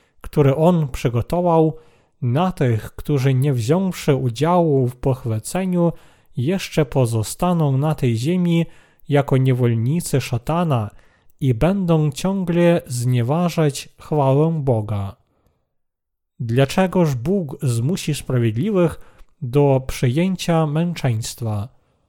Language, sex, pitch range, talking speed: Polish, male, 130-165 Hz, 85 wpm